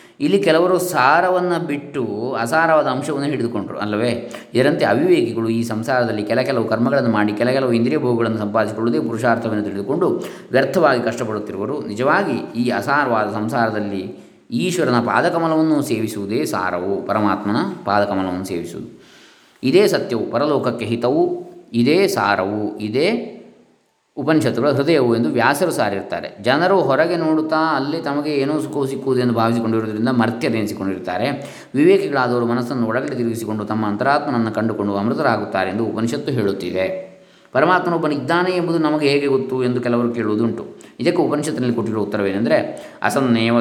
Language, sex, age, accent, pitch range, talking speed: Kannada, male, 20-39, native, 110-150 Hz, 110 wpm